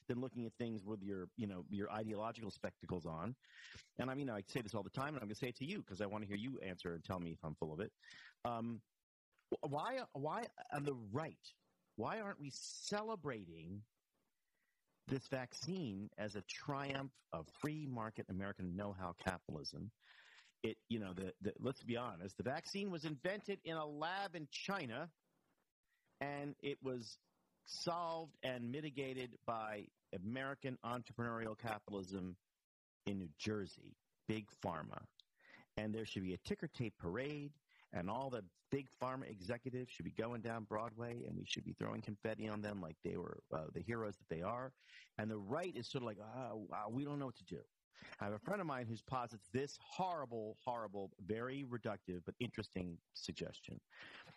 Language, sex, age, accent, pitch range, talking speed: English, male, 50-69, American, 100-135 Hz, 180 wpm